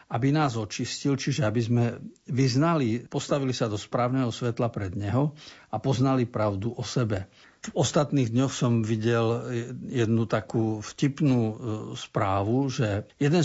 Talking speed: 135 wpm